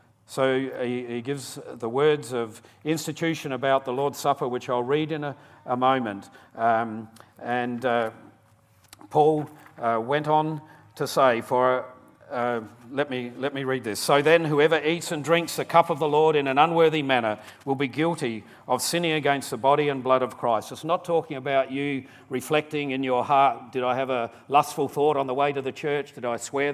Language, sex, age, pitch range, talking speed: English, male, 40-59, 125-150 Hz, 190 wpm